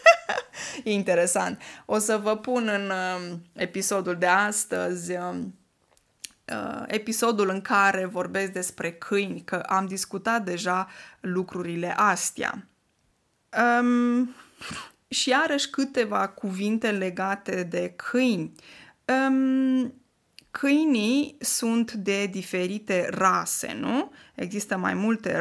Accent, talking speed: native, 100 wpm